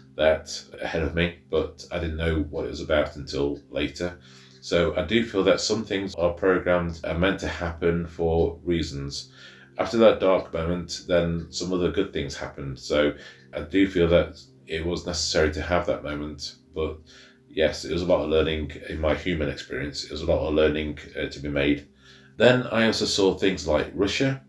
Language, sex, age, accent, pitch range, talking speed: English, male, 30-49, British, 75-85 Hz, 195 wpm